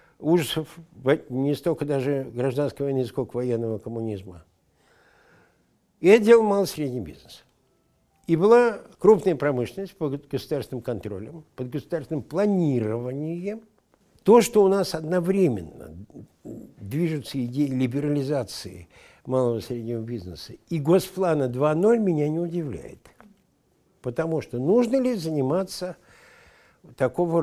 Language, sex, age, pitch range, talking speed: Russian, male, 60-79, 125-170 Hz, 105 wpm